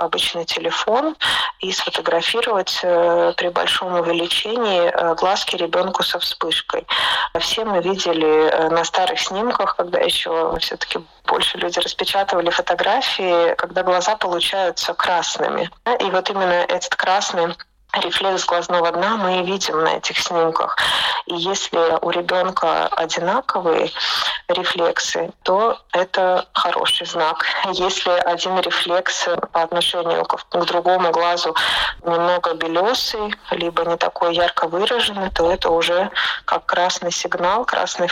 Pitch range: 175-210 Hz